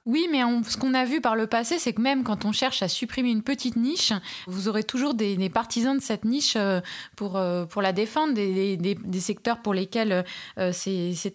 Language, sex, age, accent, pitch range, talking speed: French, female, 20-39, French, 210-255 Hz, 220 wpm